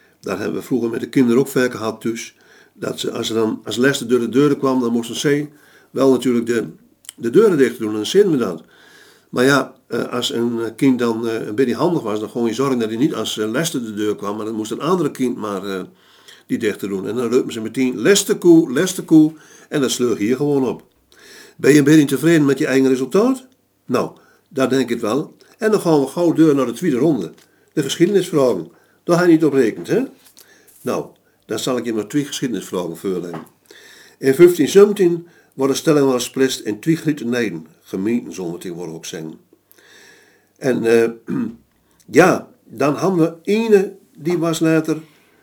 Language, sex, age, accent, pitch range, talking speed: Dutch, male, 50-69, Dutch, 120-165 Hz, 200 wpm